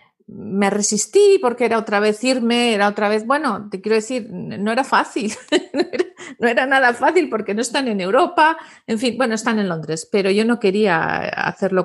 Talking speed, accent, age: 195 wpm, Spanish, 50-69